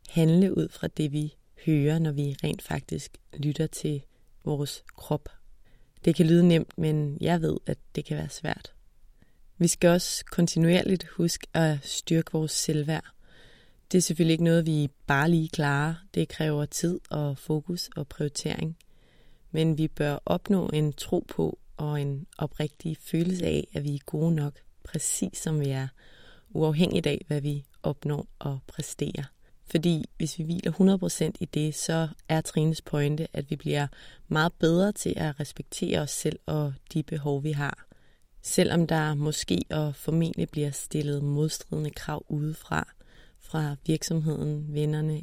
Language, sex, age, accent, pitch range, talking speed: Danish, female, 30-49, native, 150-165 Hz, 155 wpm